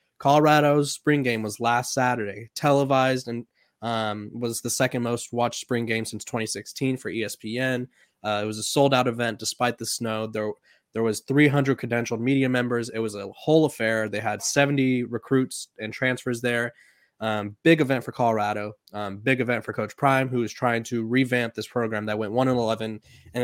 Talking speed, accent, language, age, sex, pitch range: 185 wpm, American, English, 20-39, male, 110-130 Hz